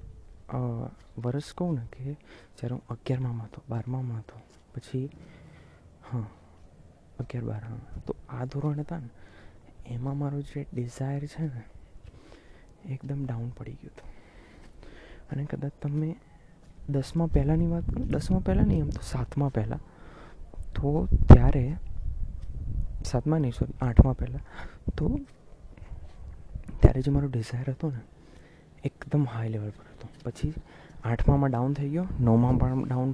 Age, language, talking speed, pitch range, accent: 20-39, Gujarati, 100 wpm, 115-145 Hz, native